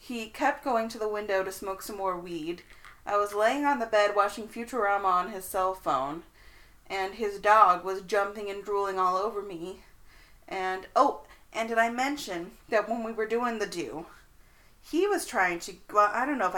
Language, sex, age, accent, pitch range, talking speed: English, female, 30-49, American, 180-215 Hz, 200 wpm